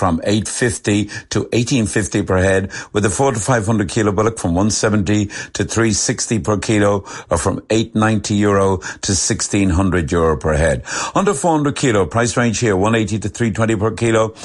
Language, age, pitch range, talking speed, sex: English, 60-79, 95-115 Hz, 160 wpm, male